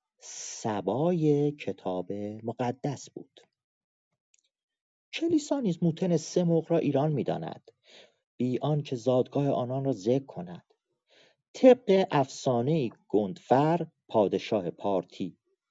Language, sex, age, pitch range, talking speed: Persian, male, 40-59, 110-160 Hz, 90 wpm